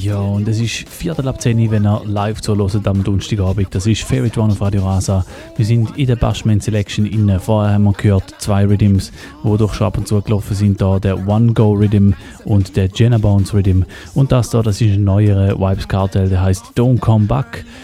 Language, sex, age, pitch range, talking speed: German, male, 30-49, 100-115 Hz, 200 wpm